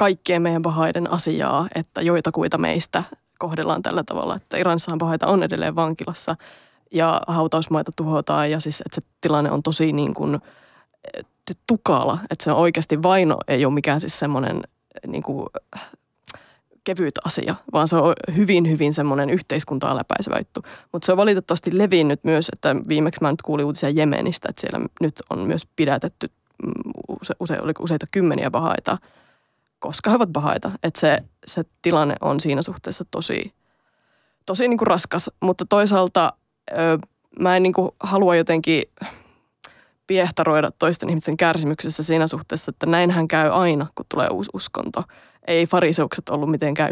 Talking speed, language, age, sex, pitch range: 145 wpm, Finnish, 20-39, female, 155-180 Hz